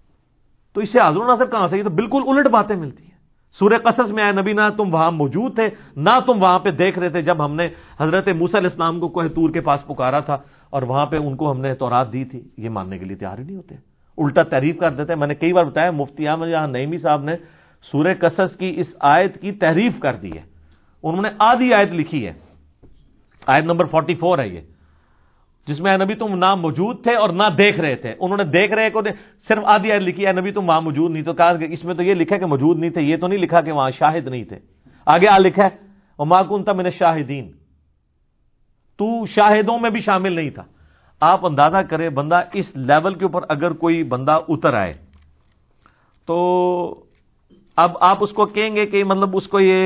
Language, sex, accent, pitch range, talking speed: English, male, Indian, 145-195 Hz, 180 wpm